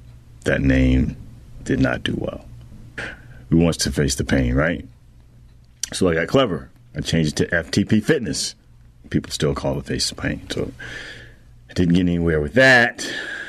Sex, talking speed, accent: male, 165 wpm, American